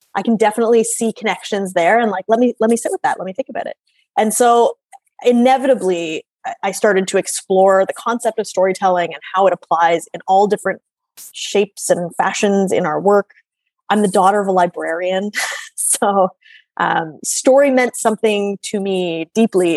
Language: English